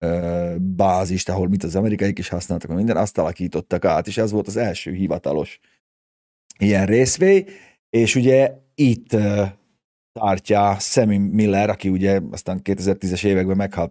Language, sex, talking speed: Hungarian, male, 140 wpm